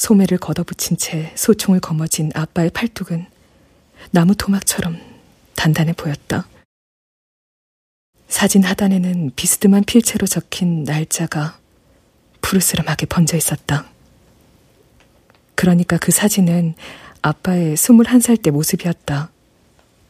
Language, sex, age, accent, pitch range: Korean, female, 40-59, native, 155-200 Hz